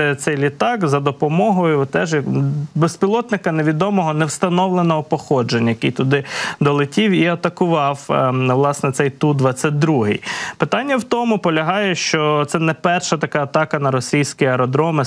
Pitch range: 130-165 Hz